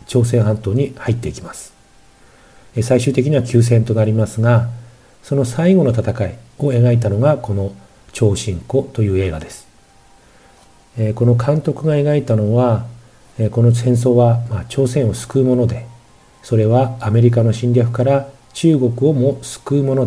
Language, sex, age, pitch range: Japanese, male, 40-59, 110-130 Hz